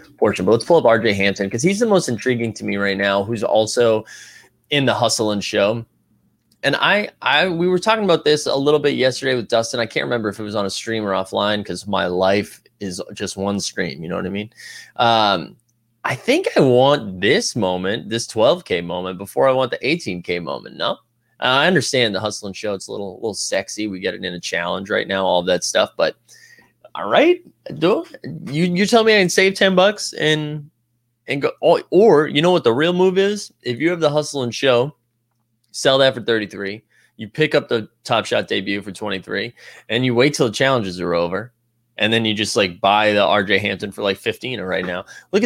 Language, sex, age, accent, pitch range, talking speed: English, male, 20-39, American, 105-145 Hz, 225 wpm